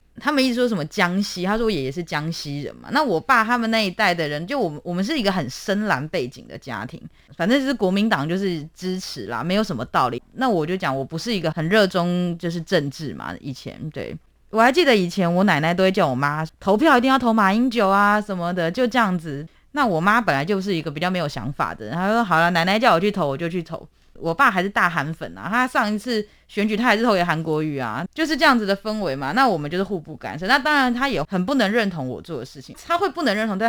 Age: 20-39